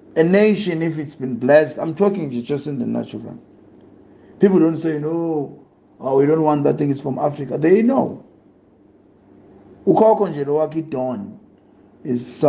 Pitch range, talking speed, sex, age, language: 125-155 Hz, 135 wpm, male, 50-69, English